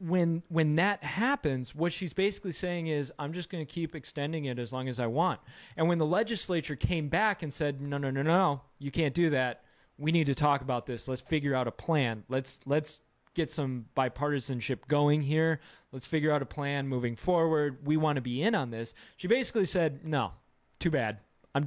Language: English